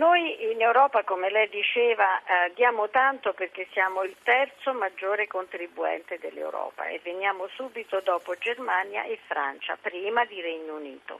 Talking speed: 145 wpm